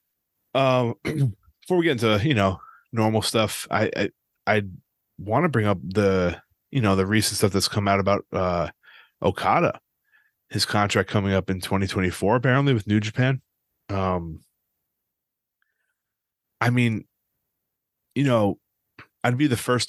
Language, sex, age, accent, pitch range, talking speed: English, male, 20-39, American, 95-110 Hz, 140 wpm